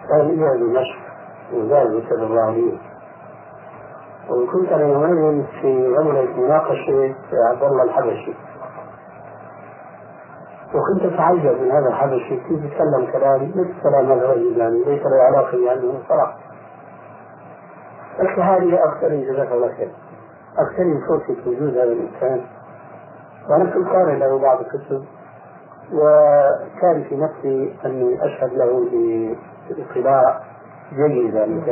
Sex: male